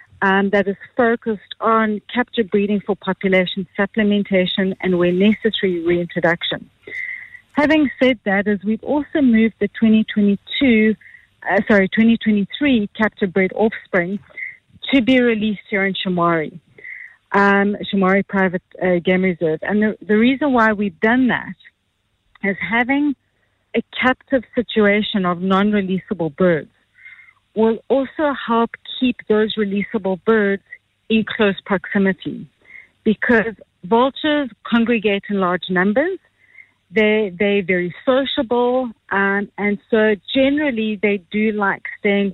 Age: 40-59